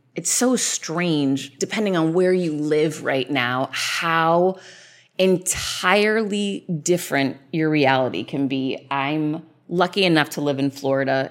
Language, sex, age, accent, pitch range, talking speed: English, female, 20-39, American, 145-180 Hz, 125 wpm